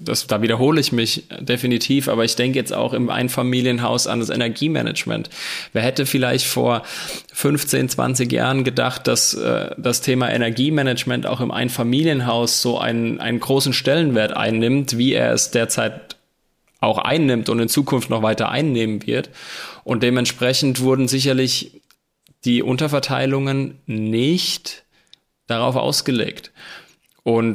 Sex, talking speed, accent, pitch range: male, 130 wpm, German, 115-135 Hz